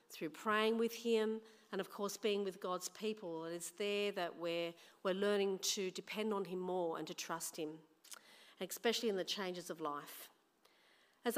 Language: English